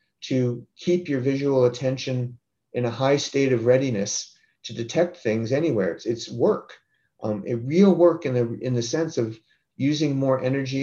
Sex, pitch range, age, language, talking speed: male, 115-135 Hz, 40-59, English, 170 wpm